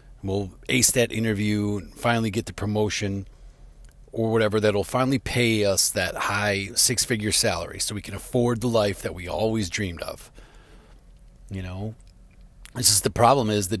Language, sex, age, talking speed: English, male, 40-59, 165 wpm